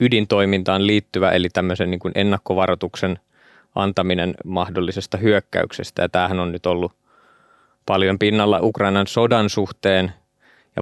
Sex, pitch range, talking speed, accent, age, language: male, 90-100 Hz, 100 wpm, native, 20-39, Finnish